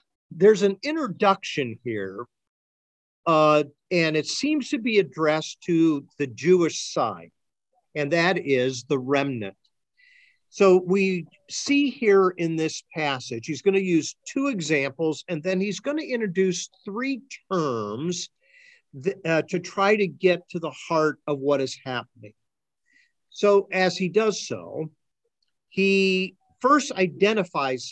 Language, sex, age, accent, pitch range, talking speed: English, male, 50-69, American, 140-200 Hz, 130 wpm